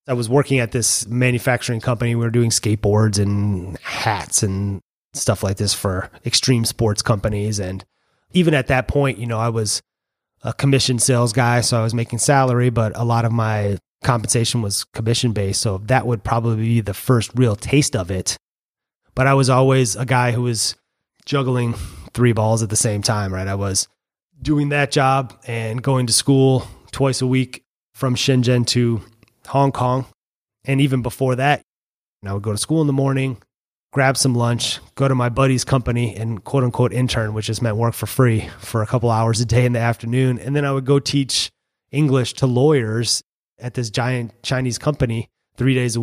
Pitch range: 110-130 Hz